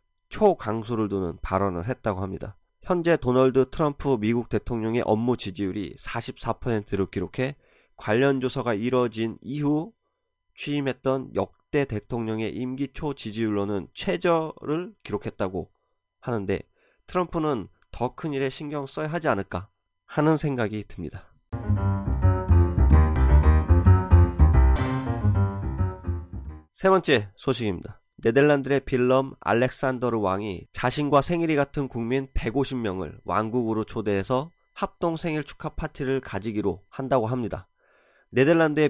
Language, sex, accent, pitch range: Korean, male, native, 100-145 Hz